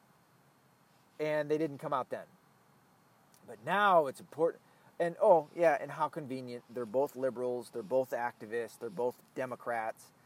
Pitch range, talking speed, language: 125-170 Hz, 145 wpm, English